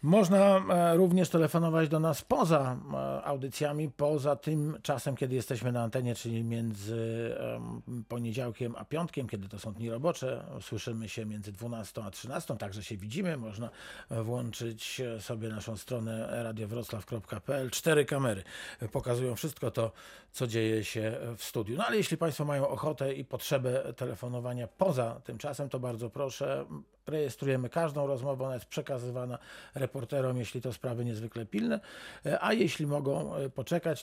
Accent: native